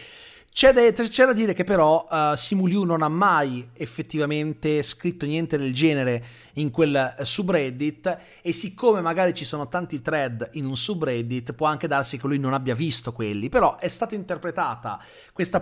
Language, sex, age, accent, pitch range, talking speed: Italian, male, 30-49, native, 135-175 Hz, 170 wpm